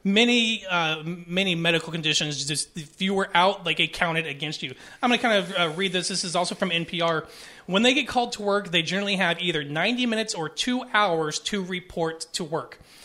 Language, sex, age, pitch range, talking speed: English, male, 30-49, 160-210 Hz, 210 wpm